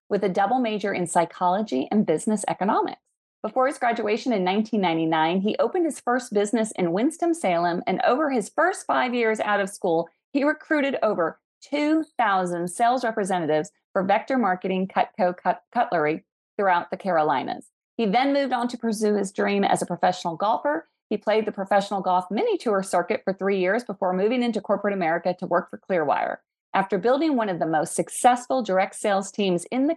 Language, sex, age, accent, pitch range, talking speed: English, female, 40-59, American, 185-240 Hz, 175 wpm